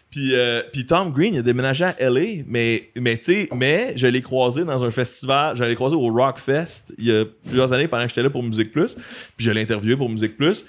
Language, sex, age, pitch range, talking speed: French, male, 30-49, 115-150 Hz, 255 wpm